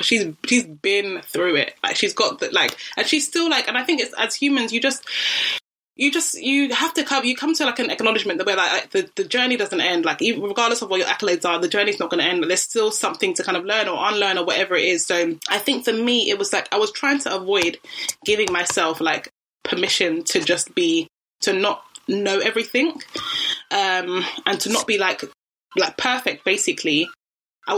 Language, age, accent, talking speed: English, 20-39, British, 225 wpm